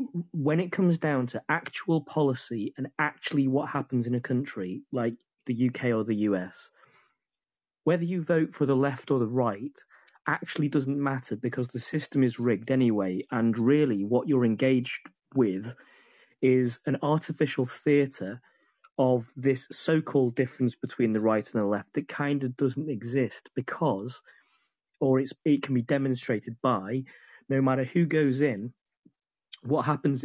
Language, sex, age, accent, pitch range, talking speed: English, male, 30-49, British, 120-145 Hz, 155 wpm